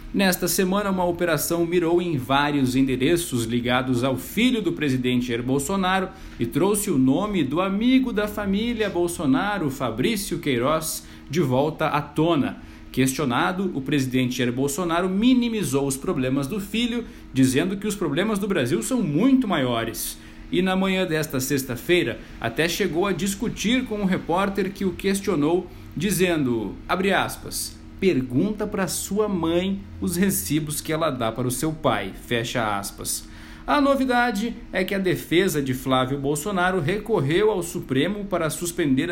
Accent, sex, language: Brazilian, male, Portuguese